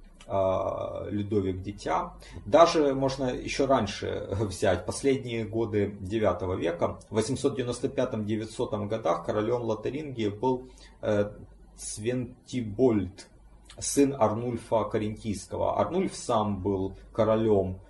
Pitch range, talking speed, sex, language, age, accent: 100-125 Hz, 85 wpm, male, Russian, 30-49, native